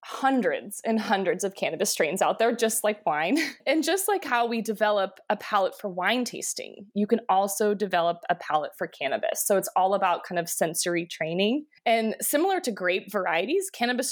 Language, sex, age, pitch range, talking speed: English, female, 20-39, 190-245 Hz, 185 wpm